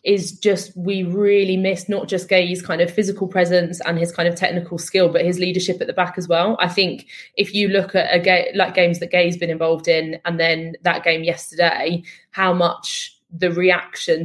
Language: English